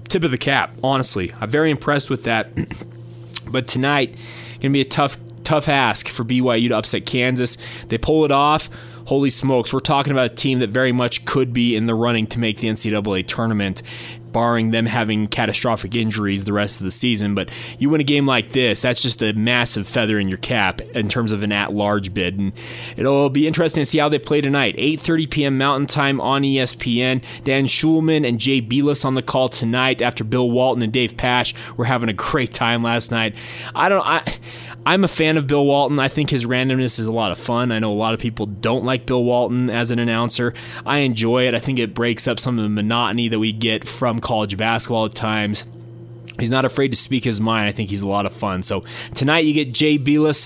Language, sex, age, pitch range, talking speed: English, male, 20-39, 115-135 Hz, 225 wpm